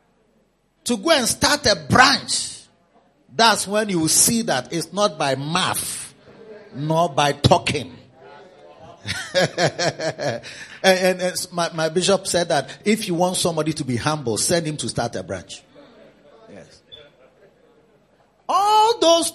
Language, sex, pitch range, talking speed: English, male, 170-250 Hz, 135 wpm